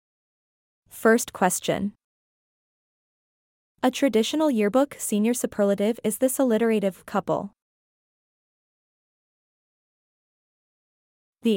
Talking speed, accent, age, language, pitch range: 60 wpm, American, 20-39, English, 200-245 Hz